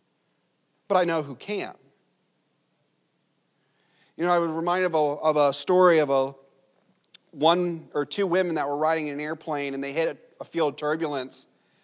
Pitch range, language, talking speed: 135-170 Hz, English, 160 wpm